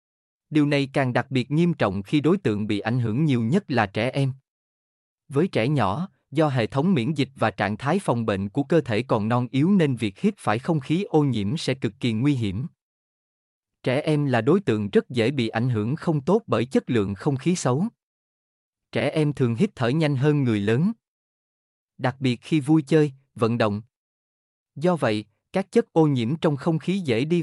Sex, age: male, 20-39